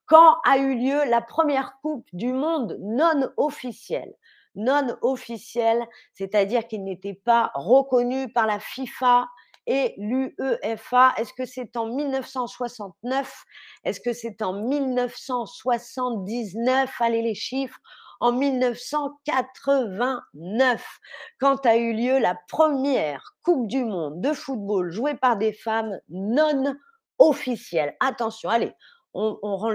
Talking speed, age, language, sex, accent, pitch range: 120 wpm, 40-59, French, female, French, 220-270 Hz